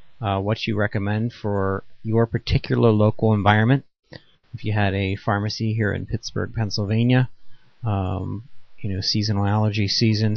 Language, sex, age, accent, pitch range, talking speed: English, male, 30-49, American, 105-120 Hz, 140 wpm